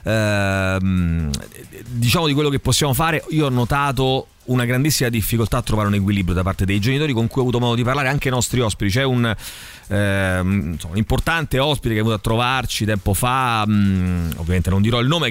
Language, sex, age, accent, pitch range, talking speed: Italian, male, 30-49, native, 105-140 Hz, 190 wpm